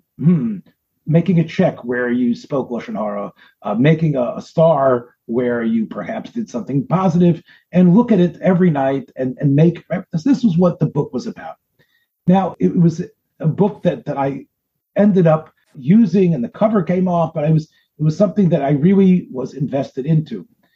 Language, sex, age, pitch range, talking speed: English, male, 40-59, 135-195 Hz, 185 wpm